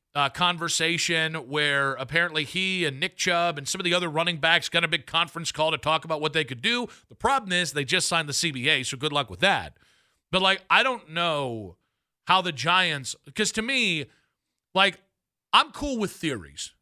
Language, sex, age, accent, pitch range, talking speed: English, male, 40-59, American, 145-185 Hz, 200 wpm